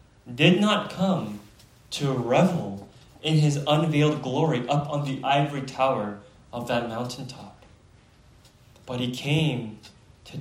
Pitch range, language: 110-155 Hz, English